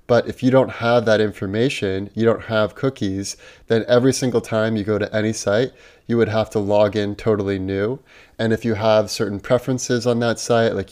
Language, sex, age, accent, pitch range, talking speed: English, male, 20-39, American, 105-120 Hz, 210 wpm